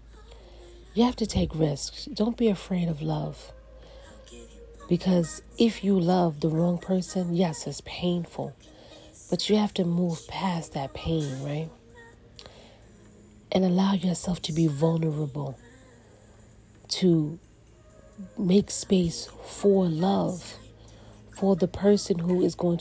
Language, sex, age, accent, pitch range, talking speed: English, female, 40-59, American, 115-185 Hz, 120 wpm